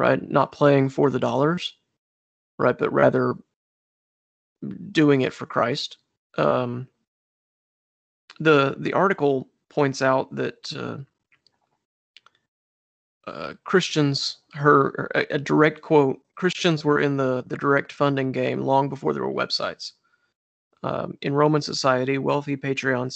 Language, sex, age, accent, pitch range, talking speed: English, male, 30-49, American, 130-150 Hz, 120 wpm